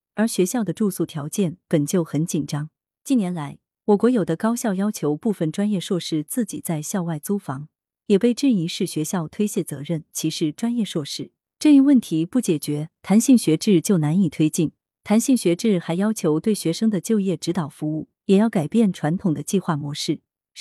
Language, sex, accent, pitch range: Chinese, female, native, 155-215 Hz